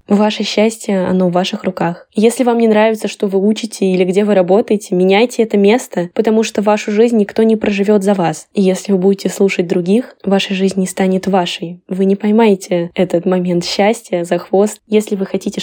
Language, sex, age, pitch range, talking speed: Russian, female, 10-29, 185-215 Hz, 195 wpm